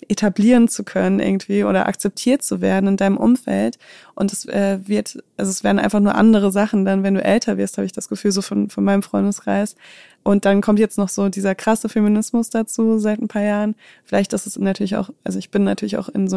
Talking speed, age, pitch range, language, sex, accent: 225 wpm, 20-39, 195-215 Hz, German, female, German